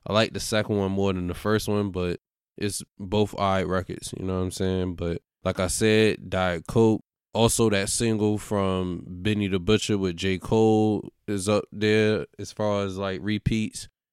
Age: 20-39